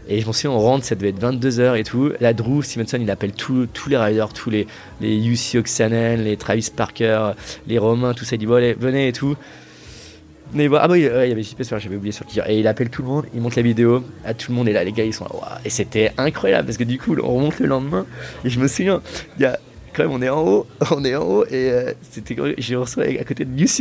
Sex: male